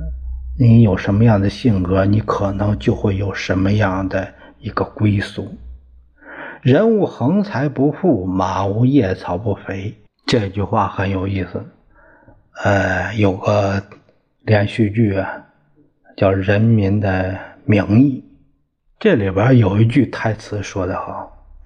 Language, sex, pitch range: Chinese, male, 90-115 Hz